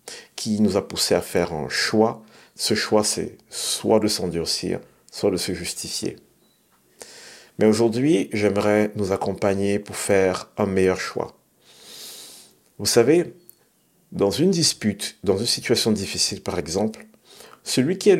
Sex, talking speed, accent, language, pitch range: male, 140 wpm, French, French, 95-110 Hz